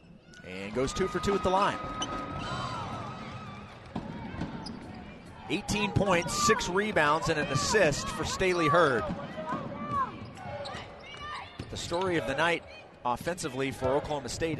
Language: English